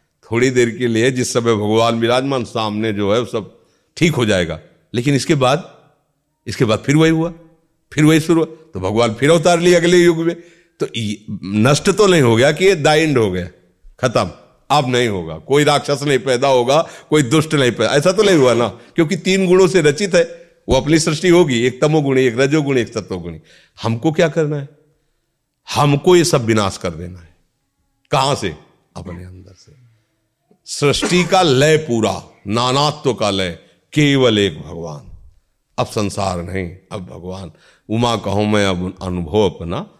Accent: native